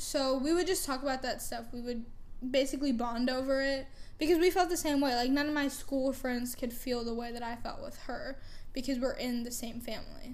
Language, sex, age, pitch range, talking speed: English, female, 10-29, 235-280 Hz, 240 wpm